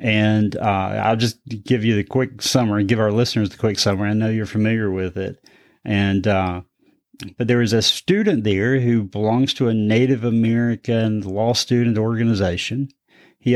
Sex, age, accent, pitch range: male, 30-49, American, 110-130 Hz